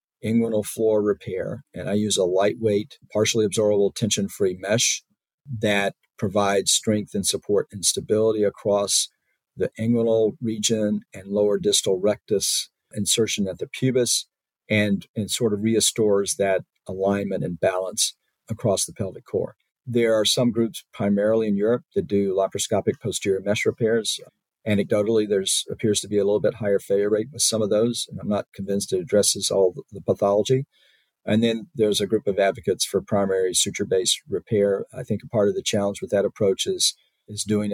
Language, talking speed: English, 165 wpm